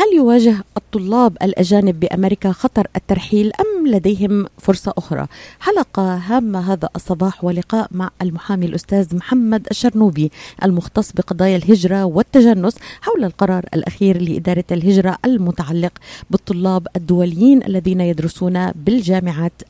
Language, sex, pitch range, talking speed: Arabic, female, 185-230 Hz, 110 wpm